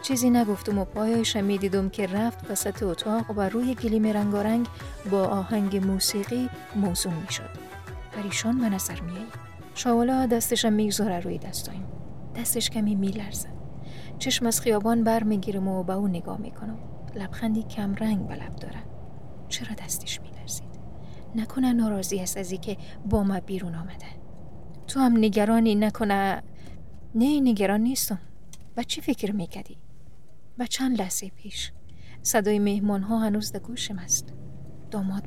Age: 40-59